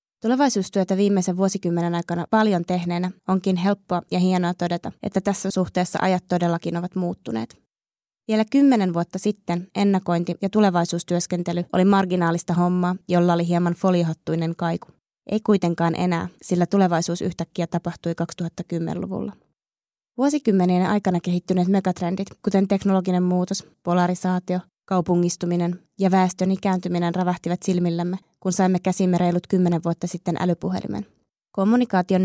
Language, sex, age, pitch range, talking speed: Finnish, female, 20-39, 175-190 Hz, 120 wpm